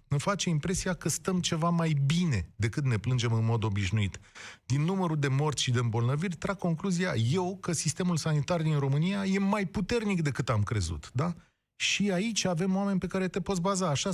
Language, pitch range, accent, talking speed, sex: Romanian, 110-170 Hz, native, 195 wpm, male